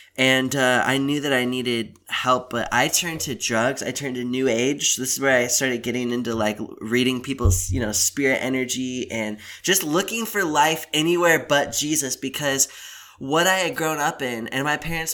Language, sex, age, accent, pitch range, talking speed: English, male, 10-29, American, 120-145 Hz, 200 wpm